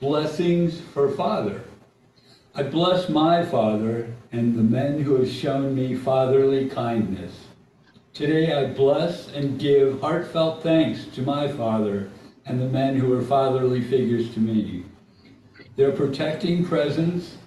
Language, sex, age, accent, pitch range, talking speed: English, male, 60-79, American, 115-140 Hz, 130 wpm